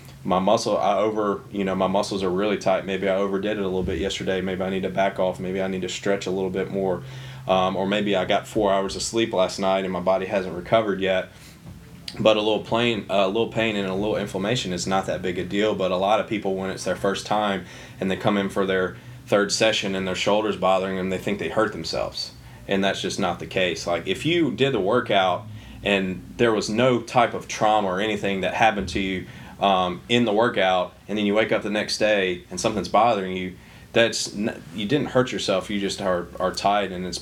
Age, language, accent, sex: 20-39, English, American, male